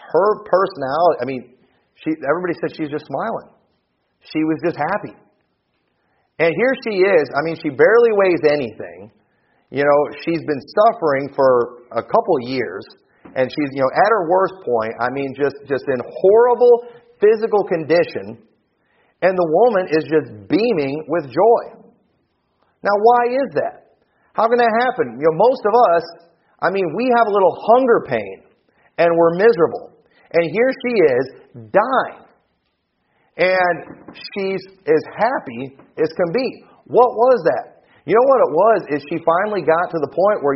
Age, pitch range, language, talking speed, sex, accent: 40-59, 140-200 Hz, English, 160 wpm, male, American